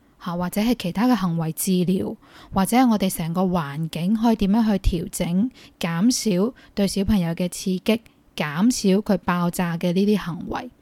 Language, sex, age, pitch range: Chinese, female, 10-29, 185-225 Hz